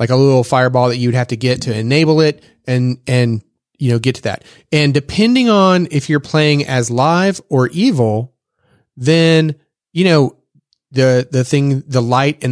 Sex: male